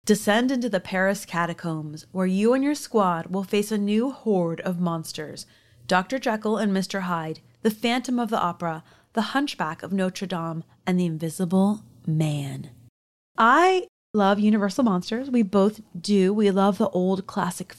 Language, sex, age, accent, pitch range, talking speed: English, female, 30-49, American, 185-240 Hz, 160 wpm